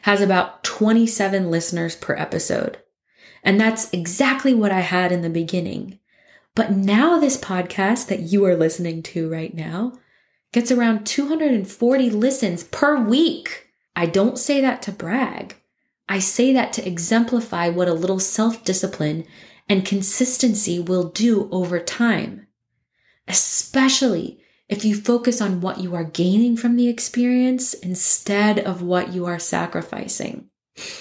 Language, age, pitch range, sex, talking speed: English, 20-39, 175-230 Hz, female, 135 wpm